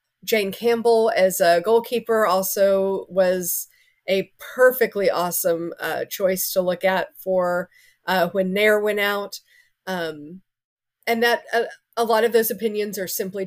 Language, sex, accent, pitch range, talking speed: English, female, American, 180-225 Hz, 145 wpm